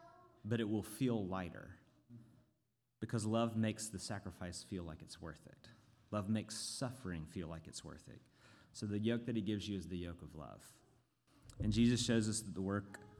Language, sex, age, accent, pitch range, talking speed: English, male, 30-49, American, 100-120 Hz, 190 wpm